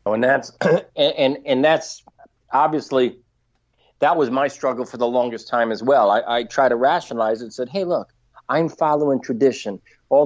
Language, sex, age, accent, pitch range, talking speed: English, male, 40-59, American, 115-145 Hz, 160 wpm